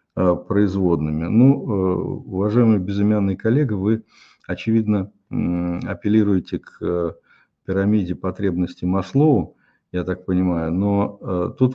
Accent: native